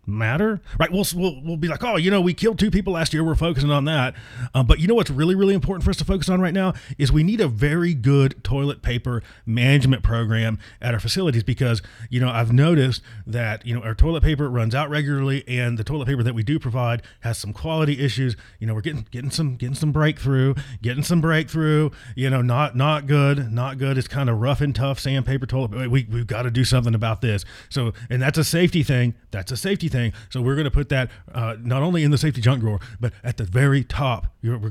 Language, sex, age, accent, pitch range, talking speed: English, male, 30-49, American, 120-160 Hz, 240 wpm